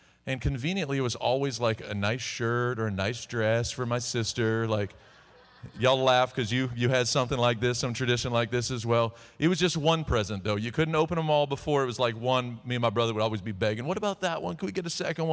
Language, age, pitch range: English, 40-59, 115-140 Hz